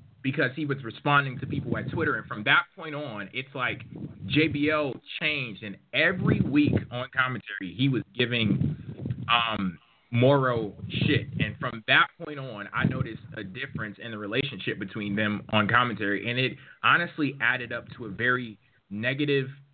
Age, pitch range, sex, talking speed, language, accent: 20-39, 110-140 Hz, male, 160 wpm, English, American